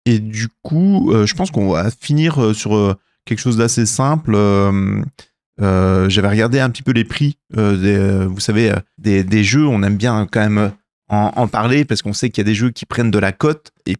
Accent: French